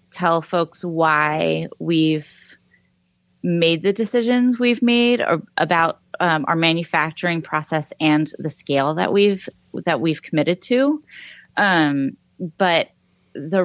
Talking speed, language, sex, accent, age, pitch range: 120 wpm, English, female, American, 20-39, 155-185 Hz